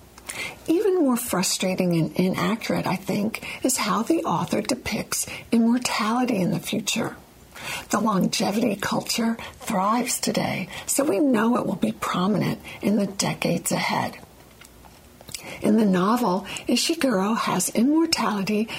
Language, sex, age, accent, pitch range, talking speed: English, female, 60-79, American, 180-240 Hz, 120 wpm